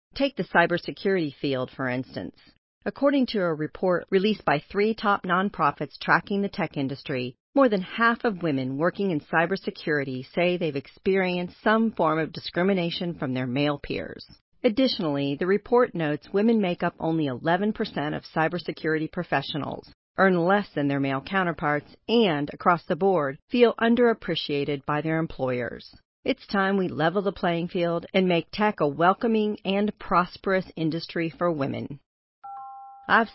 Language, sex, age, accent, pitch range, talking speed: English, female, 40-59, American, 150-200 Hz, 150 wpm